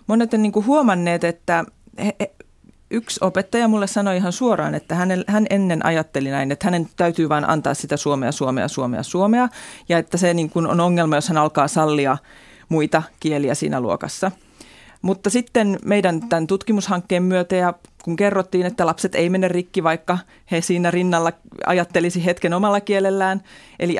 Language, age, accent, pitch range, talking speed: Finnish, 30-49, native, 160-205 Hz, 165 wpm